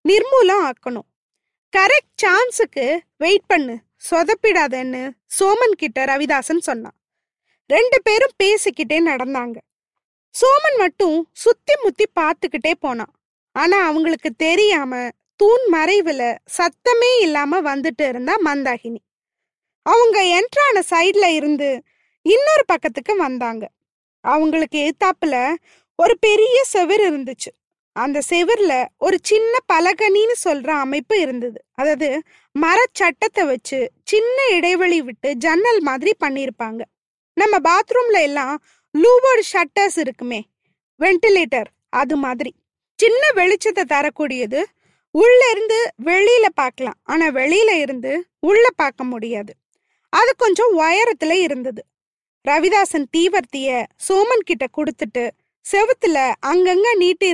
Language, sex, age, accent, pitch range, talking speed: Tamil, female, 20-39, native, 280-410 Hz, 100 wpm